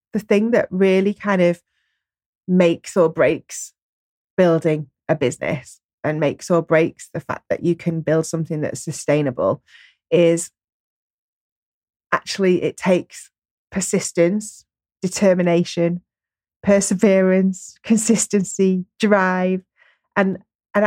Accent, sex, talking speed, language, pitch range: British, female, 105 wpm, English, 165-195 Hz